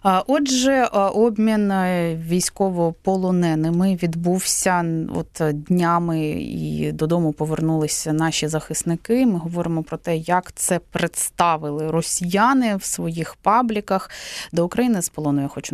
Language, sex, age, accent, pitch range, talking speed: Ukrainian, female, 20-39, native, 155-195 Hz, 105 wpm